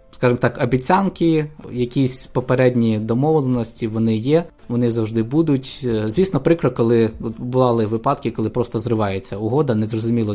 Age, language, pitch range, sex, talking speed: 20-39, Ukrainian, 110-135 Hz, male, 120 wpm